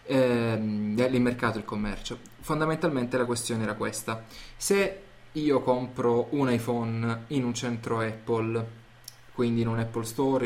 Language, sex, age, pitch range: Italian, male, 20-39, 110-125 Hz